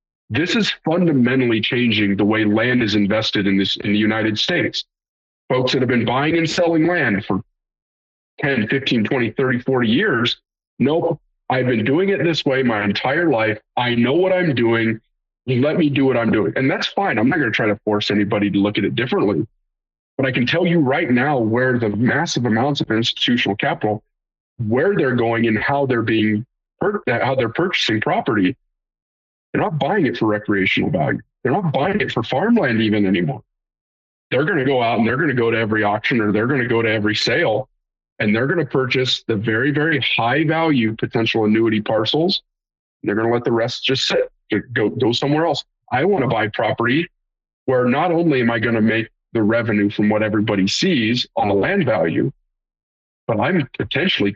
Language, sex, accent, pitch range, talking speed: English, male, American, 105-135 Hz, 200 wpm